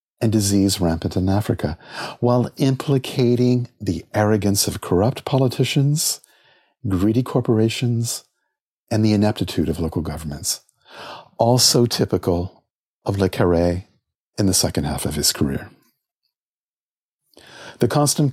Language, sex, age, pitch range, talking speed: English, male, 50-69, 95-130 Hz, 110 wpm